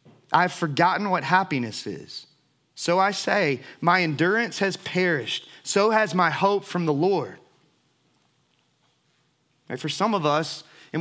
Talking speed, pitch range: 130 wpm, 150-175 Hz